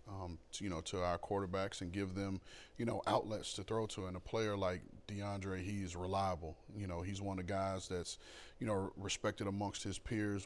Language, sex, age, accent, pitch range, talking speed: English, male, 30-49, American, 95-105 Hz, 220 wpm